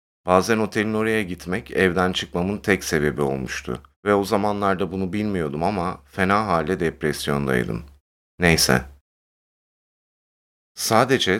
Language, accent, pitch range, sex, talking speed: Turkish, native, 75-100 Hz, male, 105 wpm